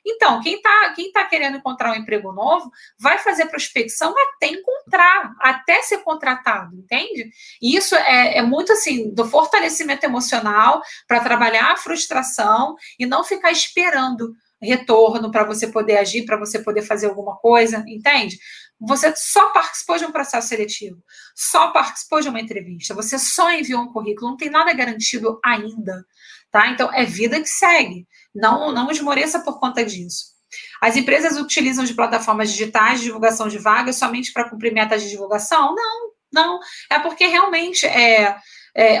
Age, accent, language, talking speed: 20-39, Brazilian, Portuguese, 160 wpm